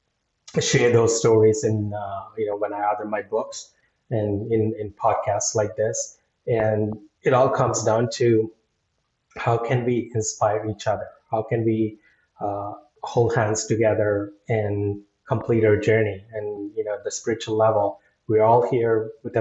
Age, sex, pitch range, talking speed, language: 20-39, male, 105-115 Hz, 160 wpm, English